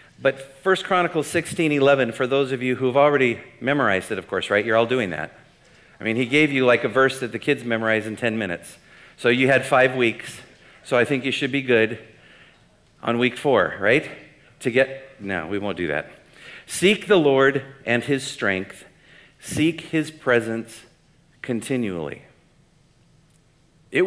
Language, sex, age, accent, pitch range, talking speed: English, male, 50-69, American, 115-140 Hz, 170 wpm